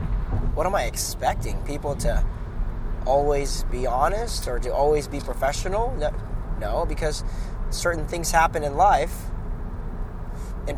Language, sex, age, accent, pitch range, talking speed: English, male, 20-39, American, 110-155 Hz, 130 wpm